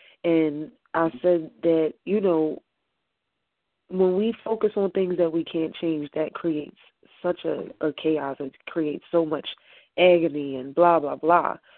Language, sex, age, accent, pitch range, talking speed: English, female, 20-39, American, 160-195 Hz, 155 wpm